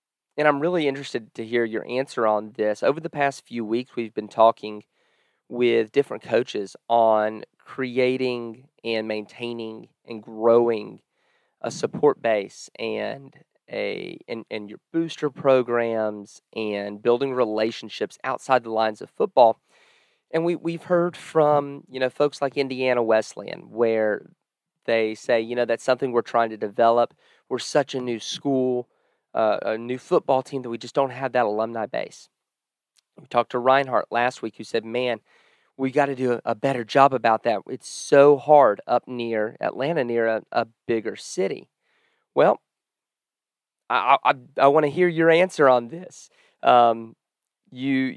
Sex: male